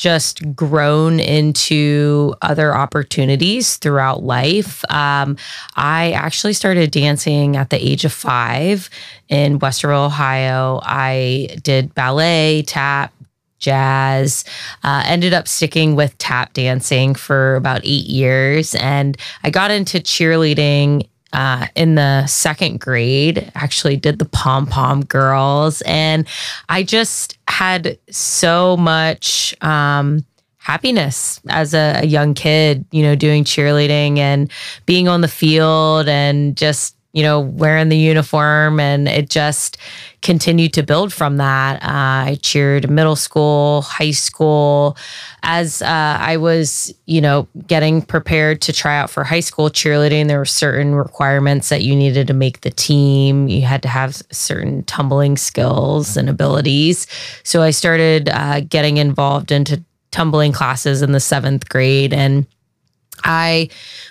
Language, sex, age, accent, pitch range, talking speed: English, female, 20-39, American, 140-155 Hz, 135 wpm